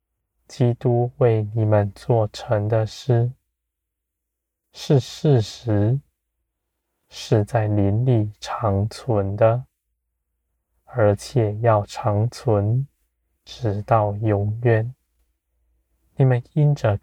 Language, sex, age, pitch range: Chinese, male, 20-39, 70-120 Hz